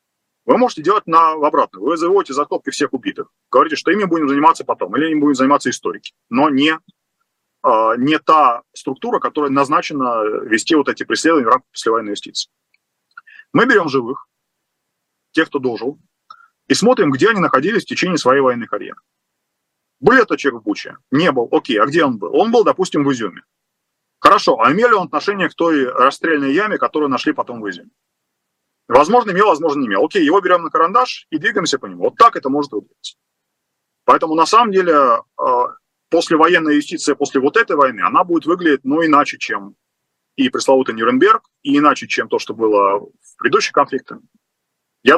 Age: 30-49